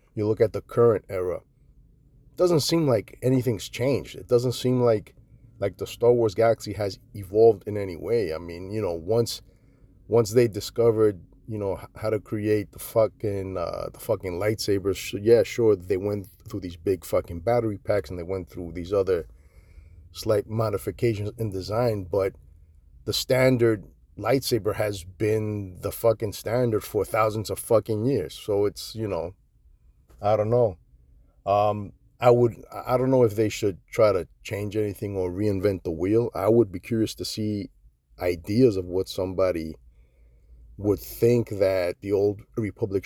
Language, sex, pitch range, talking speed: English, male, 90-120 Hz, 165 wpm